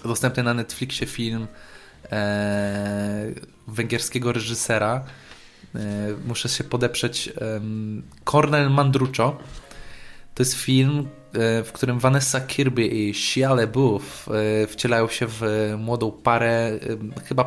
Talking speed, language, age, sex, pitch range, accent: 95 wpm, Polish, 20-39, male, 110-130 Hz, native